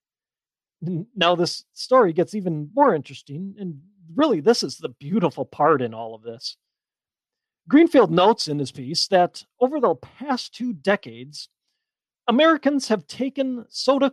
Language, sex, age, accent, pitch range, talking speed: English, male, 40-59, American, 165-245 Hz, 145 wpm